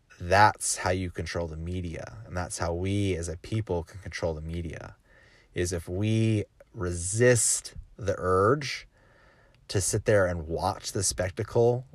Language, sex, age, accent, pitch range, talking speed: English, male, 30-49, American, 90-110 Hz, 150 wpm